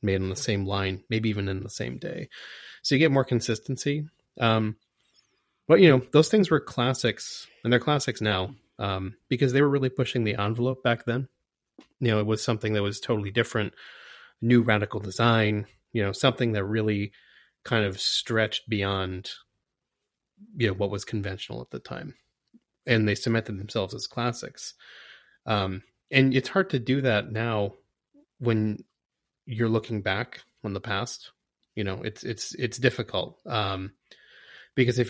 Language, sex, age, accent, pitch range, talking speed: English, male, 30-49, American, 100-125 Hz, 165 wpm